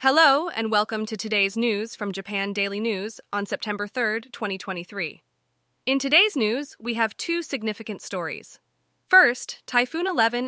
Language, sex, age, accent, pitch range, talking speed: English, female, 20-39, American, 165-225 Hz, 145 wpm